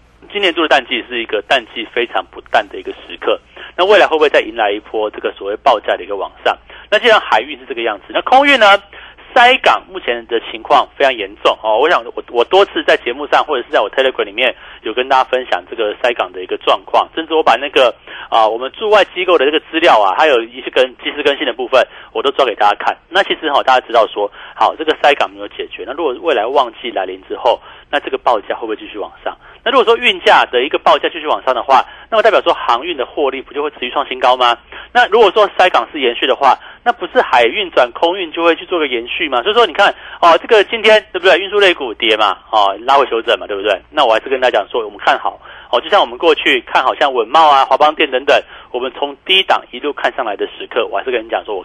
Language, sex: Chinese, male